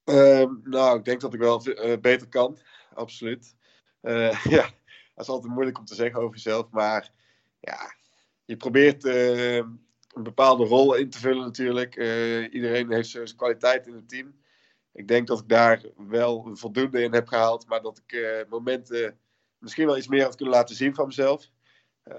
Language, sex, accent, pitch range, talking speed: Dutch, male, Dutch, 110-125 Hz, 185 wpm